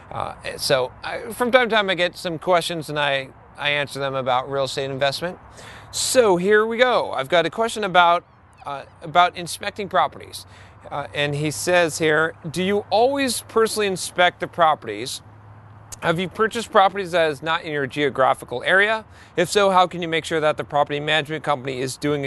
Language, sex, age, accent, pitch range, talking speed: English, male, 40-59, American, 135-185 Hz, 190 wpm